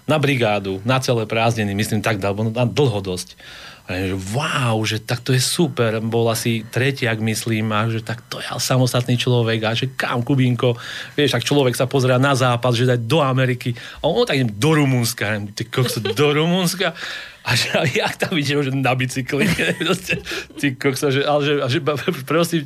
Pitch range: 120-140 Hz